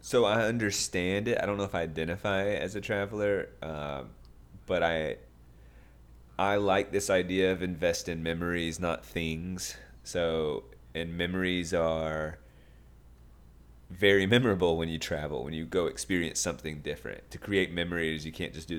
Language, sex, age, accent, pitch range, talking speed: English, male, 30-49, American, 70-90 Hz, 155 wpm